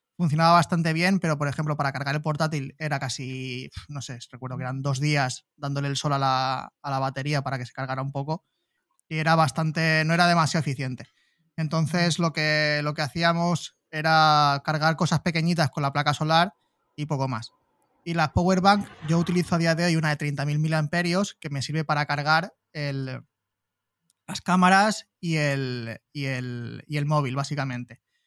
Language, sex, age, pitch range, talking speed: English, male, 20-39, 140-170 Hz, 185 wpm